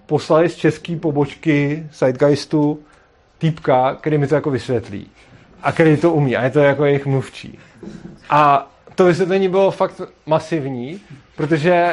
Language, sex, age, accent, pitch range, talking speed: Czech, male, 30-49, native, 130-160 Hz, 140 wpm